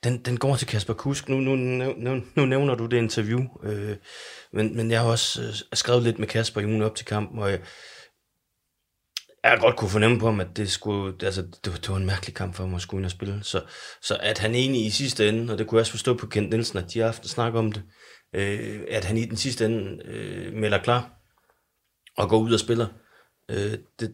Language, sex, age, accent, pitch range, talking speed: Danish, male, 30-49, native, 95-115 Hz, 240 wpm